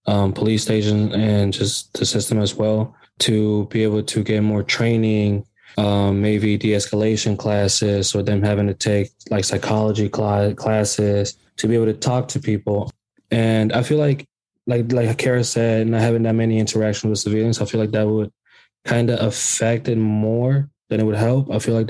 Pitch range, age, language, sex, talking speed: 105-115 Hz, 20-39, English, male, 185 wpm